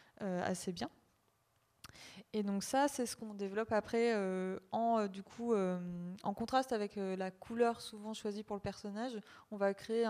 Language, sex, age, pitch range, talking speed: French, female, 20-39, 190-220 Hz, 180 wpm